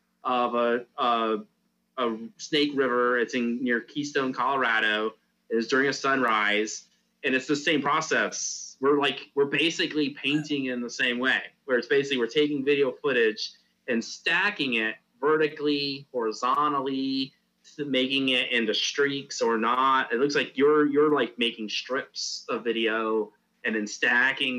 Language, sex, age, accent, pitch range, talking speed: English, male, 30-49, American, 110-140 Hz, 145 wpm